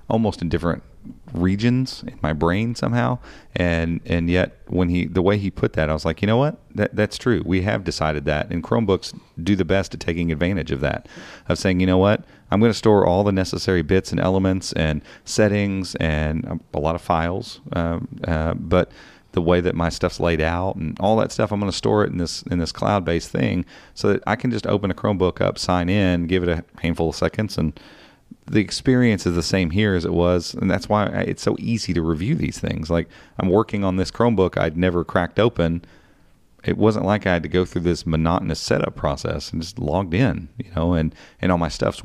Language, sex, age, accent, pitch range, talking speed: English, male, 40-59, American, 80-100 Hz, 225 wpm